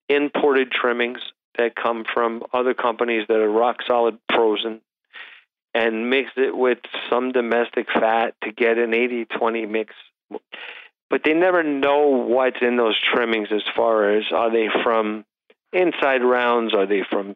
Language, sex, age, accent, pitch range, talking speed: English, male, 40-59, American, 115-140 Hz, 145 wpm